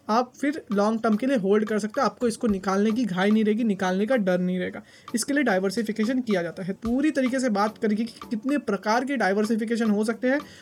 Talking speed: 235 wpm